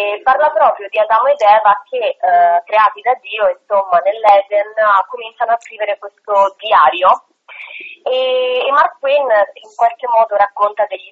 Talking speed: 155 wpm